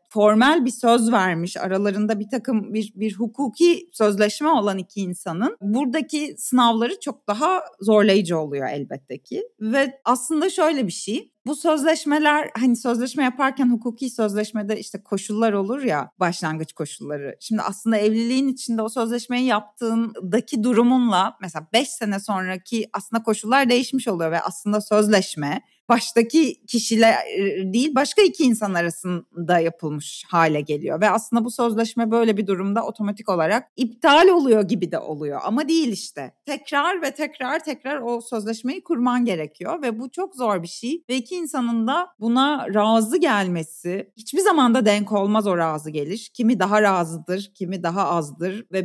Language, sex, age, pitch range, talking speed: Turkish, female, 30-49, 195-260 Hz, 150 wpm